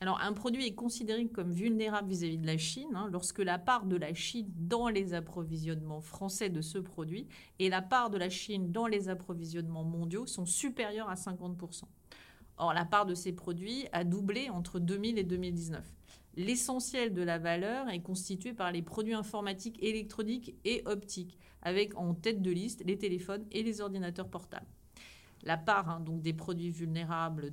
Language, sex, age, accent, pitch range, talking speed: French, female, 40-59, French, 170-210 Hz, 175 wpm